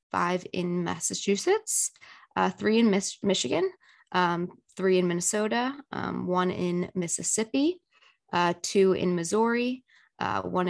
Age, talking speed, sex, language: 20-39, 120 wpm, female, English